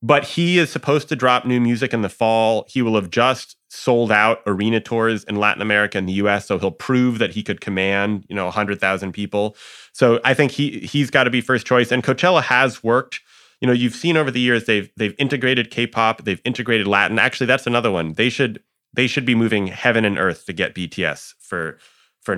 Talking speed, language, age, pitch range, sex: 225 wpm, English, 30-49, 105-125 Hz, male